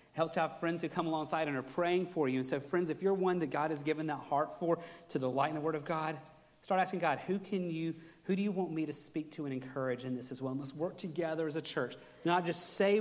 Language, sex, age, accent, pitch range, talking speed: English, male, 40-59, American, 140-175 Hz, 285 wpm